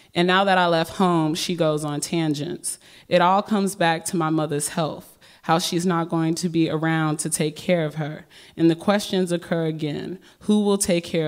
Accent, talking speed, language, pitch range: American, 205 wpm, English, 155-180 Hz